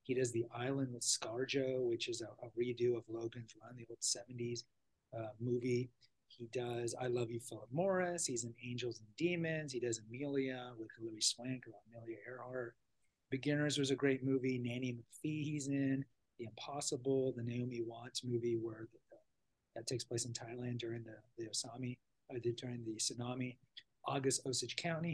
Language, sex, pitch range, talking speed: English, male, 115-135 Hz, 175 wpm